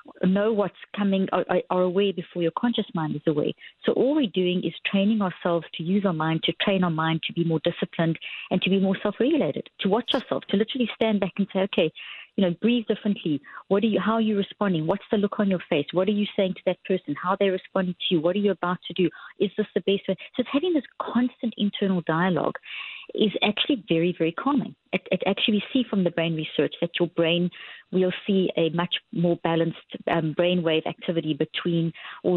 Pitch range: 165-200 Hz